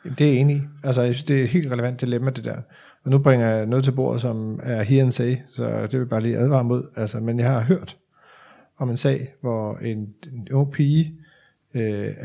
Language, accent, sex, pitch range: Danish, native, male, 115-140 Hz